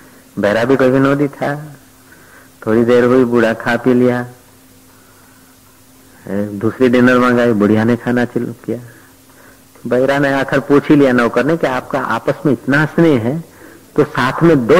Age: 50-69